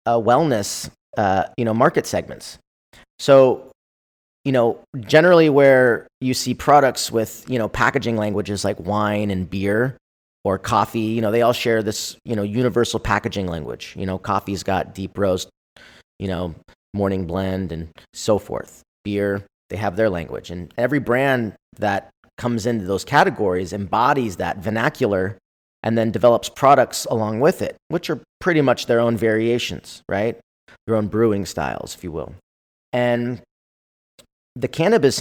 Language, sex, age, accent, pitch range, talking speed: English, male, 30-49, American, 100-125 Hz, 155 wpm